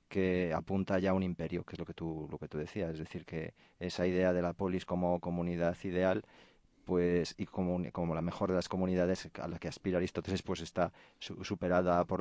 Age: 40-59